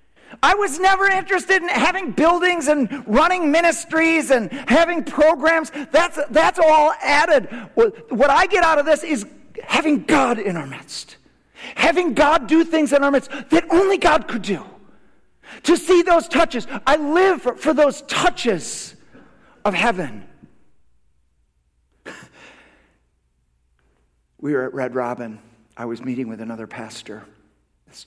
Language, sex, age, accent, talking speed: English, male, 50-69, American, 135 wpm